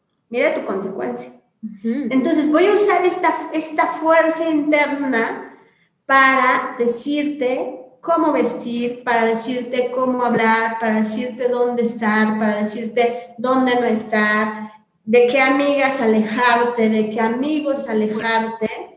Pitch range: 220-265 Hz